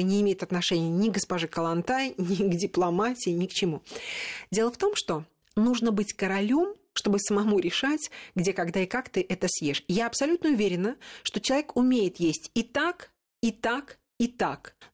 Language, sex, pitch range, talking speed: Russian, female, 185-250 Hz, 175 wpm